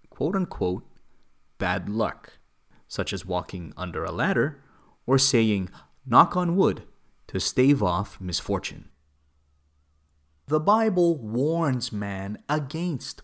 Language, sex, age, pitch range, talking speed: English, male, 30-49, 95-140 Hz, 105 wpm